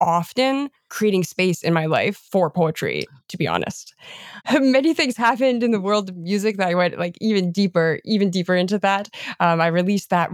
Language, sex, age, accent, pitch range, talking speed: English, female, 20-39, American, 180-235 Hz, 190 wpm